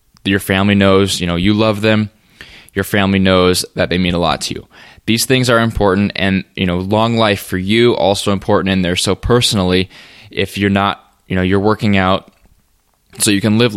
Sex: male